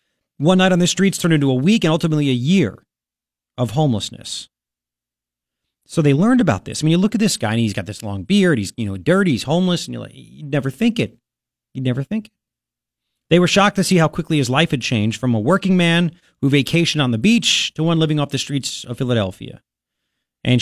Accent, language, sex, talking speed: American, English, male, 230 wpm